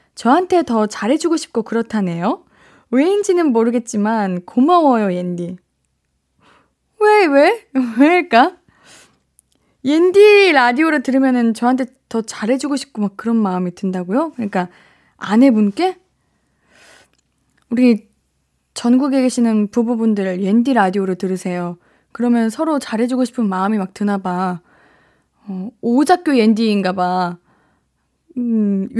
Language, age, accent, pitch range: Korean, 20-39, native, 210-305 Hz